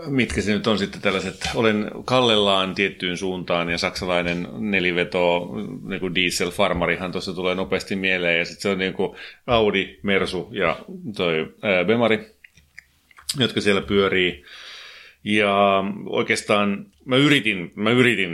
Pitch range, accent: 90-110 Hz, native